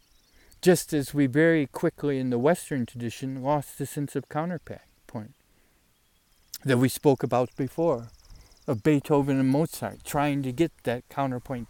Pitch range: 105-140 Hz